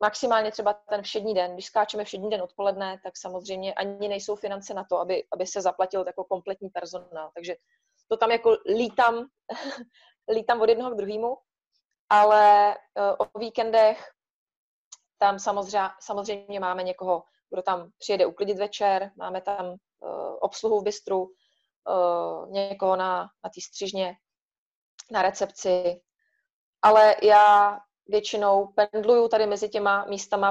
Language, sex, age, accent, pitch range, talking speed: Czech, female, 30-49, native, 190-220 Hz, 130 wpm